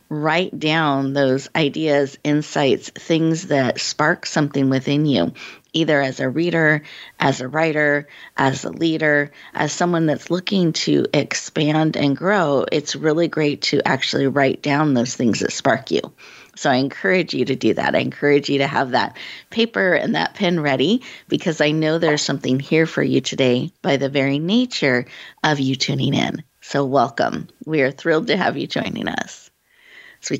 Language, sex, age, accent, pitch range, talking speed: English, female, 30-49, American, 135-170 Hz, 175 wpm